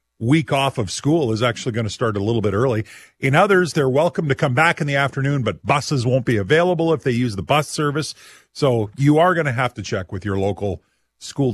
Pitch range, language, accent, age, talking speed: 115-160 Hz, English, American, 40-59, 240 wpm